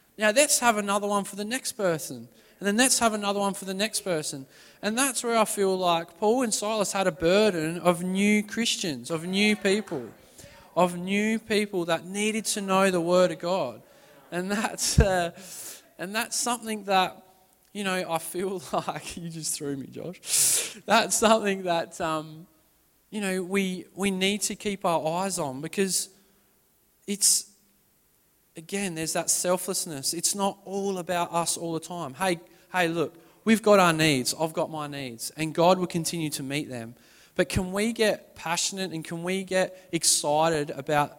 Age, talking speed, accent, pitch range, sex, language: 20-39, 180 wpm, Australian, 155-200 Hz, male, English